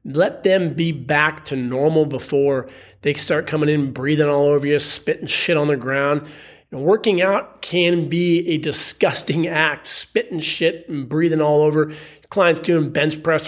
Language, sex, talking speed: English, male, 165 wpm